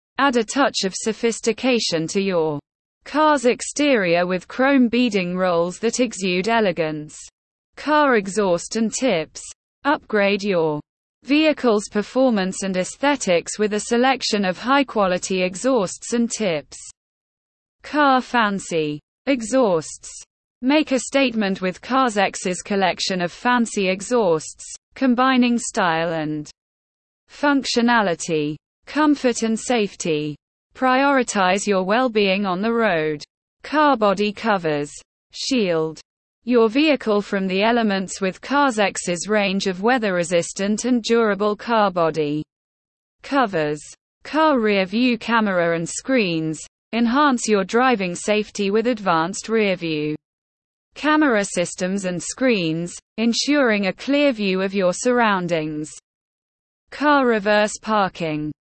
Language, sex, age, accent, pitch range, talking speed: English, female, 20-39, British, 180-250 Hz, 110 wpm